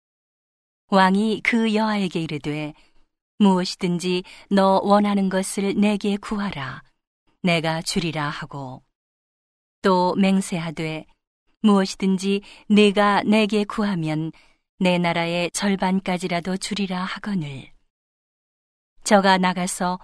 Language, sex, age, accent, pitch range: Korean, female, 40-59, native, 165-205 Hz